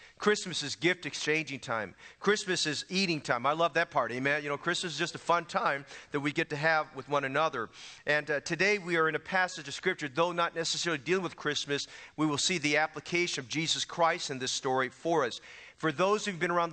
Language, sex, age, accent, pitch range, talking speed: English, male, 40-59, American, 150-175 Hz, 230 wpm